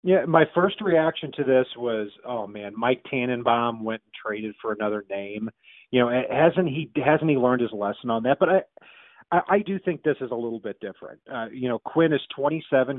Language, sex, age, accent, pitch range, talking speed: English, male, 40-59, American, 115-150 Hz, 215 wpm